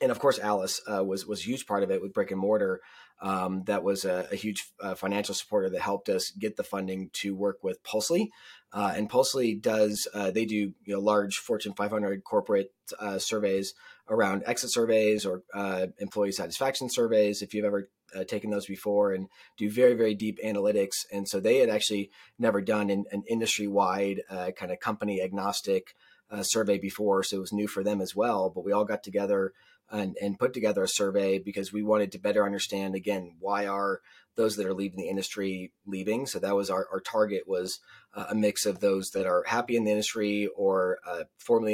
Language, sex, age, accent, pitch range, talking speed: English, male, 30-49, American, 95-110 Hz, 210 wpm